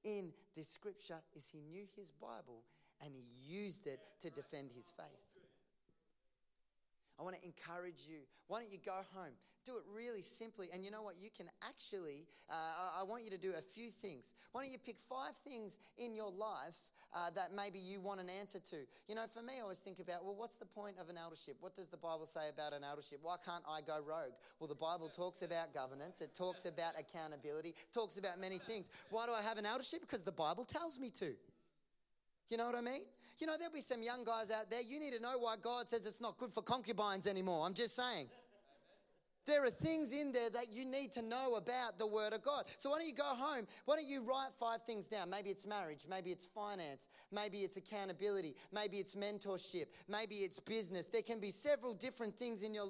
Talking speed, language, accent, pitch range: 225 wpm, English, Australian, 185-240 Hz